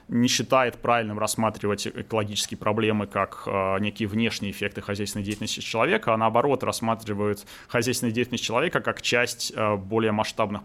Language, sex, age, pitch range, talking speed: Russian, male, 20-39, 100-115 Hz, 130 wpm